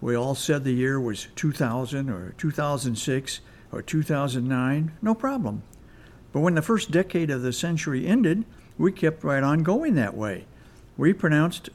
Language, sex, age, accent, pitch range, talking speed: English, male, 60-79, American, 120-160 Hz, 160 wpm